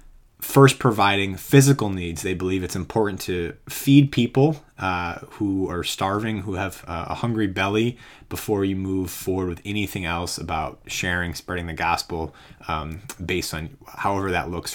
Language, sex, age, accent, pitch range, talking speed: English, male, 20-39, American, 90-120 Hz, 155 wpm